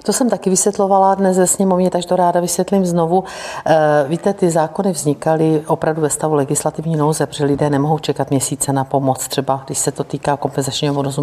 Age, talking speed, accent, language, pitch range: 50-69, 185 wpm, native, Czech, 140-165 Hz